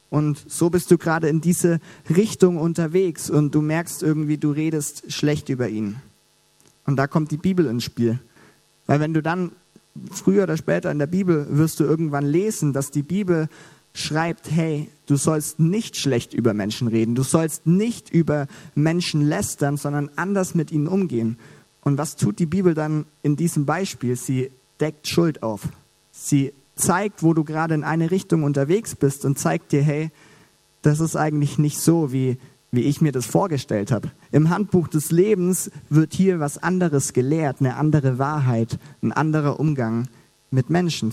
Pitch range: 140-165 Hz